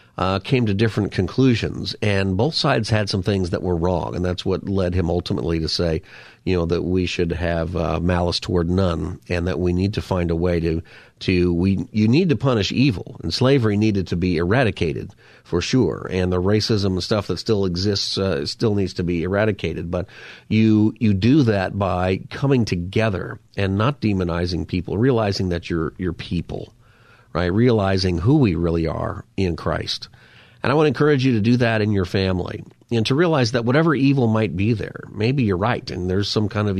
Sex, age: male, 40-59